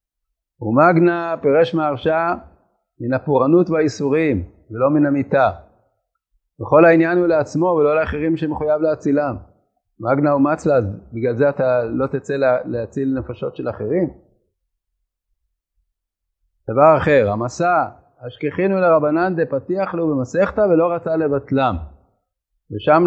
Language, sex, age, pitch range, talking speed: Hebrew, male, 40-59, 125-175 Hz, 110 wpm